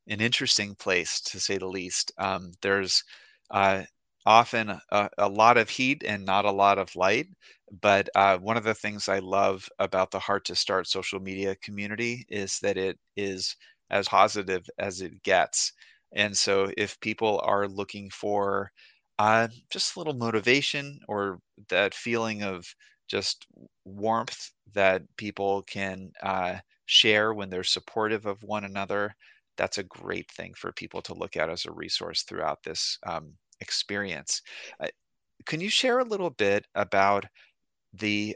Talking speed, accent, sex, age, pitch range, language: 160 wpm, American, male, 30-49, 95-110 Hz, English